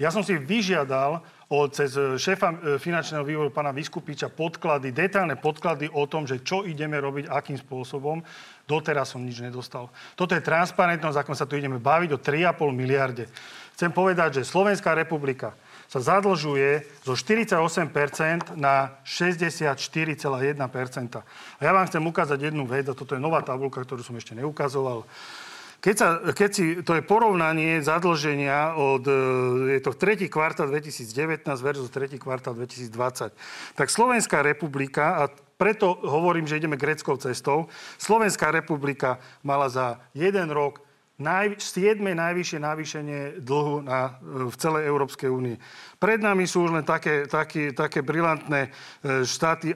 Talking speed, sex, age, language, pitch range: 140 wpm, male, 40-59, Slovak, 135-165 Hz